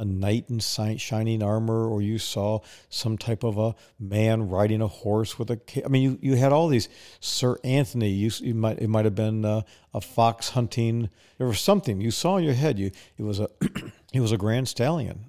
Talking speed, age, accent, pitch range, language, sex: 215 wpm, 50-69, American, 110-130 Hz, English, male